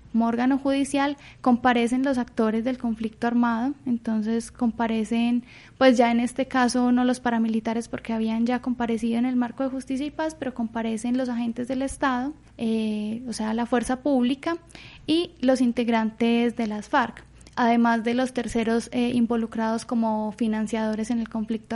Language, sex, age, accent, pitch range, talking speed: Spanish, female, 10-29, Colombian, 230-255 Hz, 165 wpm